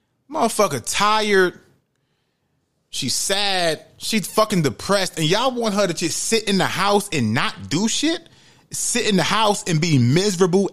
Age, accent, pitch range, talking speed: 30-49, American, 130-210 Hz, 155 wpm